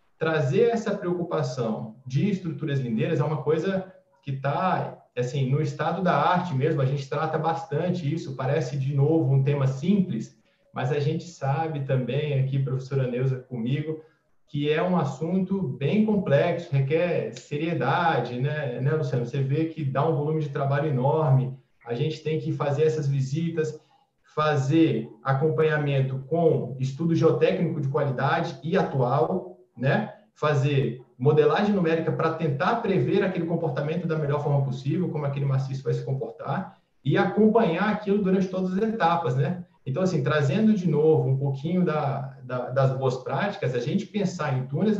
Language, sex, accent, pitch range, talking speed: Portuguese, male, Brazilian, 140-170 Hz, 155 wpm